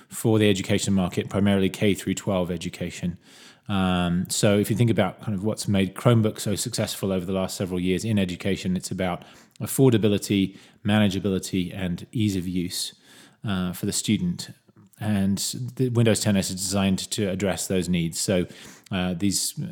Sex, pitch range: male, 95-110 Hz